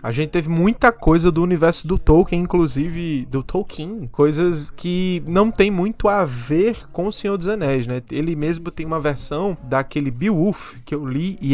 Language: Portuguese